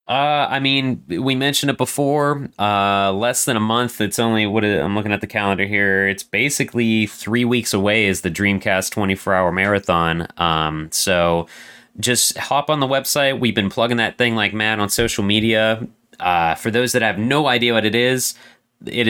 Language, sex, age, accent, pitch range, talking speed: English, male, 30-49, American, 95-120 Hz, 190 wpm